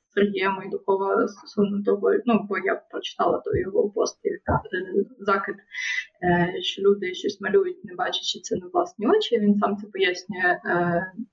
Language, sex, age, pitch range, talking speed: Ukrainian, female, 20-39, 190-250 Hz, 145 wpm